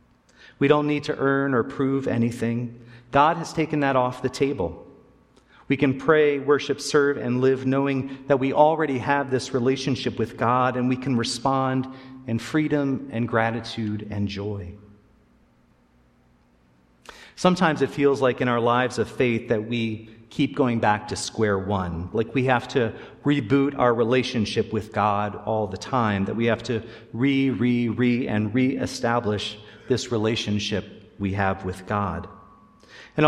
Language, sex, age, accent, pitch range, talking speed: English, male, 40-59, American, 105-135 Hz, 150 wpm